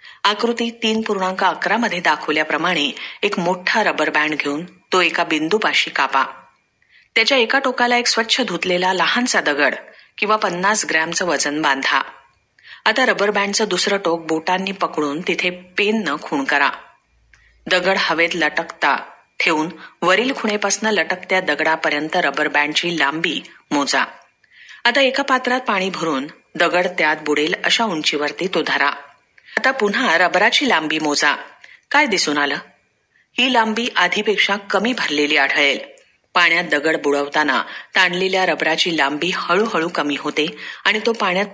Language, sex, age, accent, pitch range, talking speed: Marathi, female, 40-59, native, 160-210 Hz, 130 wpm